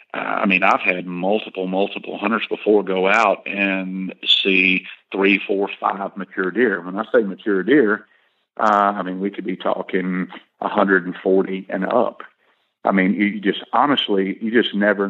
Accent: American